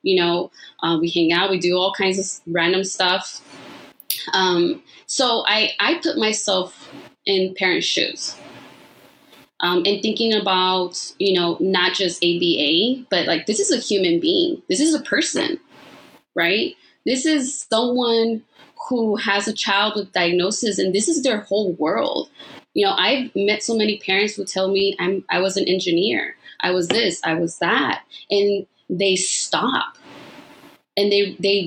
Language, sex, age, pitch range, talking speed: English, female, 20-39, 185-235 Hz, 160 wpm